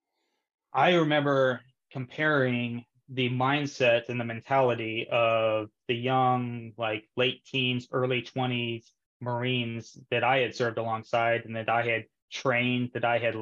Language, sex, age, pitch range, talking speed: English, male, 20-39, 115-130 Hz, 135 wpm